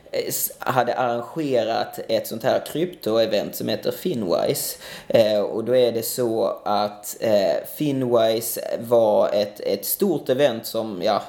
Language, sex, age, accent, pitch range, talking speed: English, male, 20-39, Swedish, 115-130 Hz, 115 wpm